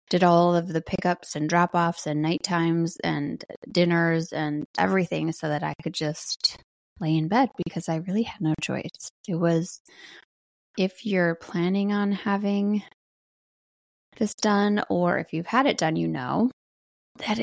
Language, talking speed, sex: English, 155 wpm, female